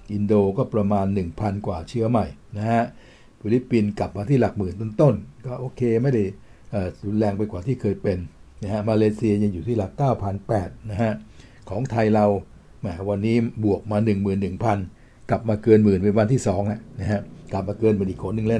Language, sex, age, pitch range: Thai, male, 60-79, 100-115 Hz